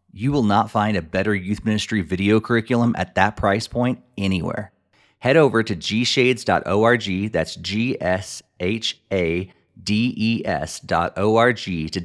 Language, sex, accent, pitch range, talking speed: English, male, American, 90-110 Hz, 110 wpm